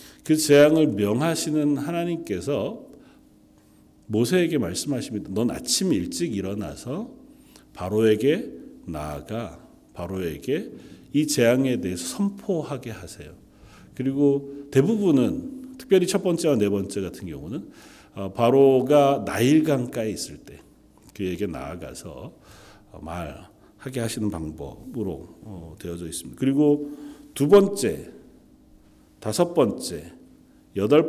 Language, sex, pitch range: Korean, male, 100-155 Hz